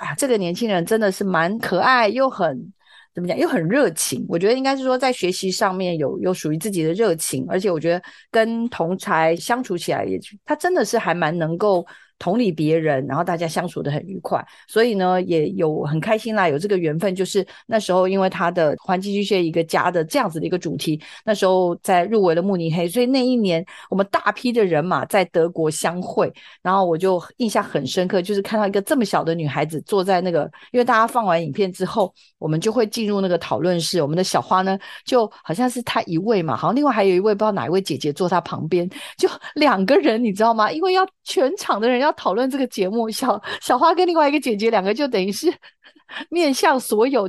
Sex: female